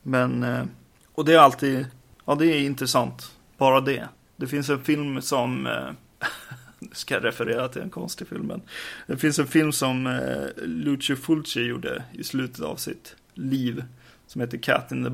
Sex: male